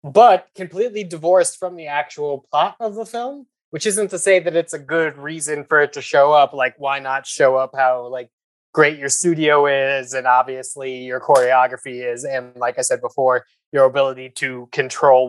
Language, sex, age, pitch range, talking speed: English, male, 20-39, 130-160 Hz, 190 wpm